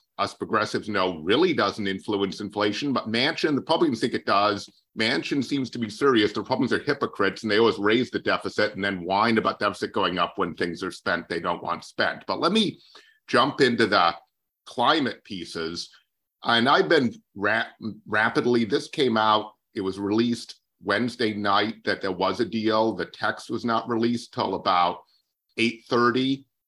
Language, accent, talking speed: English, American, 175 wpm